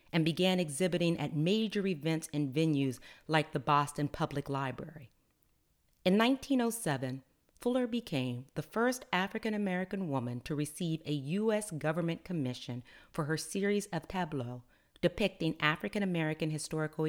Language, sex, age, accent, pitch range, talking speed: English, female, 40-59, American, 140-185 Hz, 125 wpm